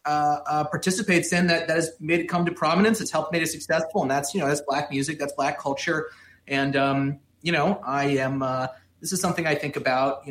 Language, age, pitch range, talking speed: English, 30-49, 135-170 Hz, 240 wpm